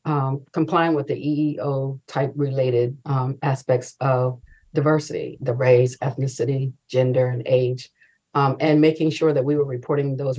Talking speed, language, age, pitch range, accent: 150 wpm, English, 50-69, 135-155 Hz, American